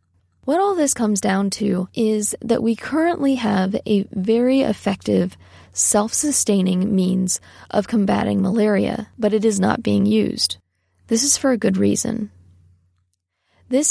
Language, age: English, 10-29